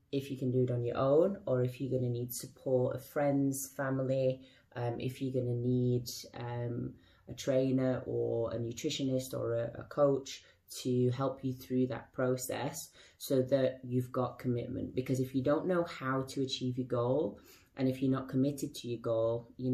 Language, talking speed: English, 190 wpm